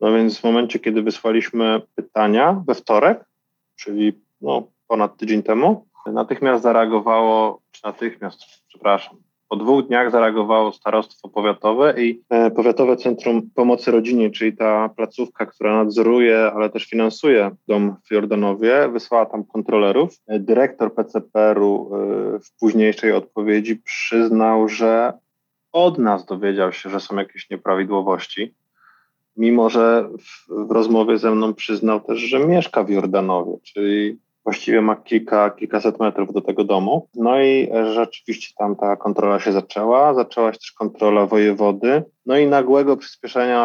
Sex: male